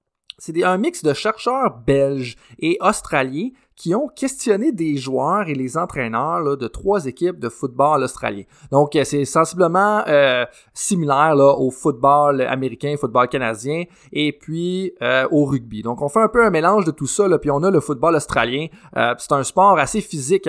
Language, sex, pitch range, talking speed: French, male, 135-185 Hz, 180 wpm